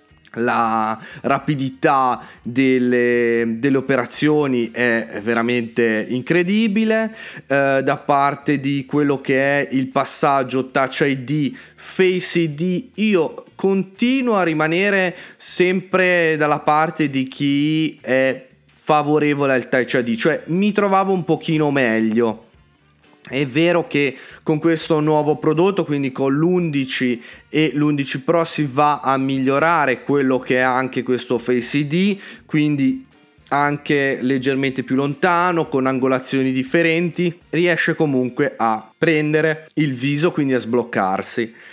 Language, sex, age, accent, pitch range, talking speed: Italian, male, 30-49, native, 130-160 Hz, 120 wpm